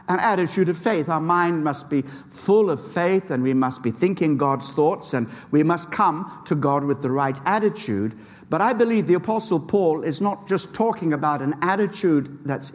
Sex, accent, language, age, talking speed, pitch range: male, British, English, 50-69, 200 wpm, 155-210 Hz